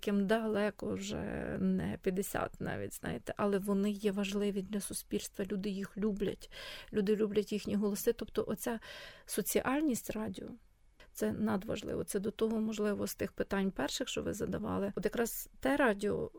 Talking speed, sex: 150 wpm, female